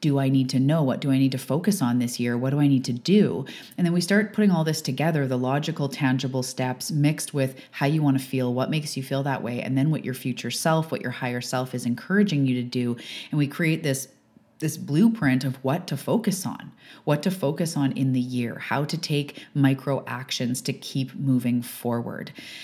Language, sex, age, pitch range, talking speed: English, female, 30-49, 130-155 Hz, 230 wpm